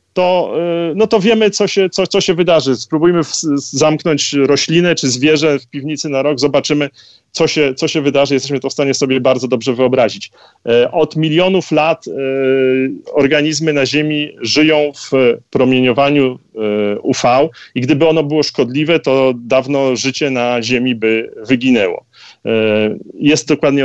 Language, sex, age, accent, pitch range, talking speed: Polish, male, 40-59, native, 130-155 Hz, 135 wpm